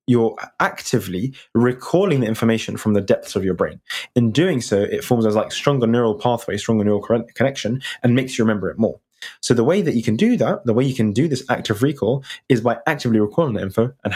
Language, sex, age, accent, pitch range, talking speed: English, male, 20-39, British, 105-130 Hz, 225 wpm